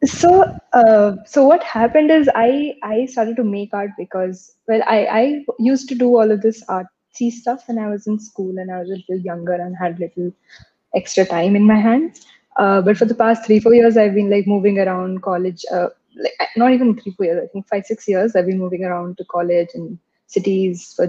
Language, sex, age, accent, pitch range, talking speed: English, female, 20-39, Indian, 190-235 Hz, 220 wpm